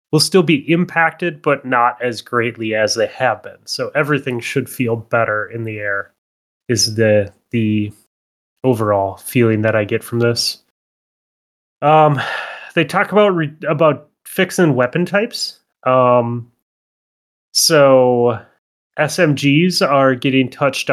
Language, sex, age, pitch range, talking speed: English, male, 30-49, 115-150 Hz, 130 wpm